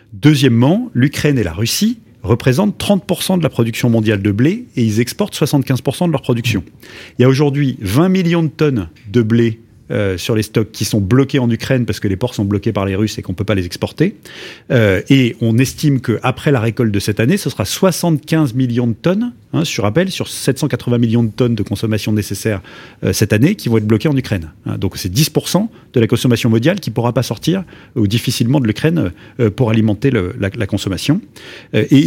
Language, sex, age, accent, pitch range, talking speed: French, male, 30-49, French, 110-140 Hz, 220 wpm